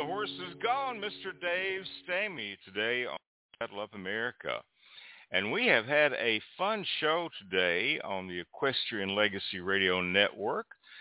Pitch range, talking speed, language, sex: 90-130 Hz, 140 wpm, English, male